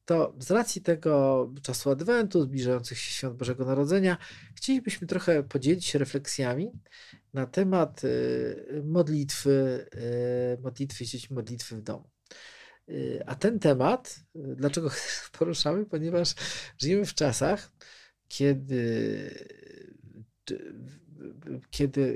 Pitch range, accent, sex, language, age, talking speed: 125-160 Hz, native, male, Polish, 40-59, 90 wpm